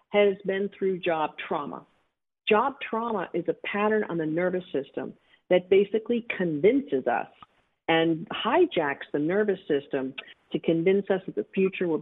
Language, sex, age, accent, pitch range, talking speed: English, female, 50-69, American, 155-215 Hz, 150 wpm